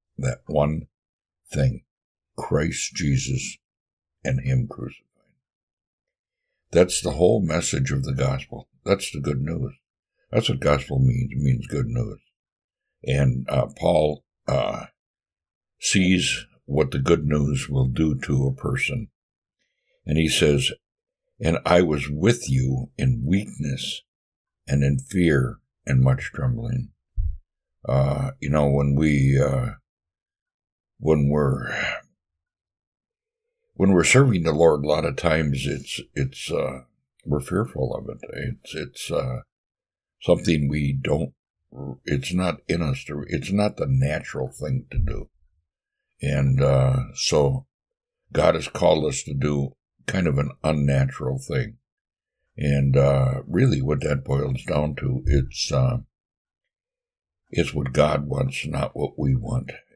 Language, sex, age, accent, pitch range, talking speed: English, male, 60-79, American, 70-115 Hz, 130 wpm